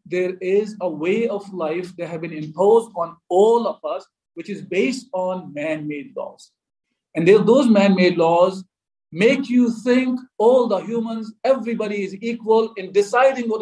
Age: 50-69